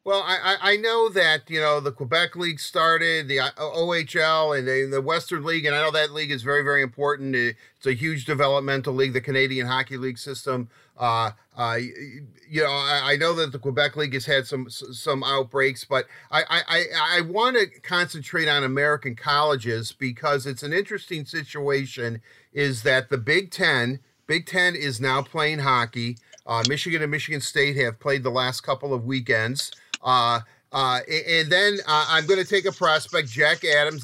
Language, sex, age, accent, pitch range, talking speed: English, male, 50-69, American, 135-165 Hz, 185 wpm